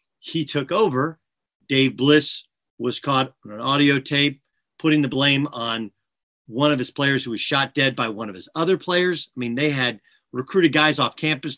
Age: 40-59